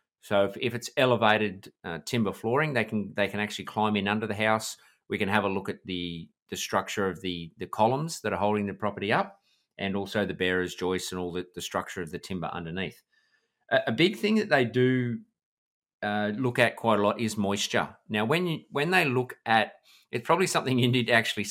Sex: male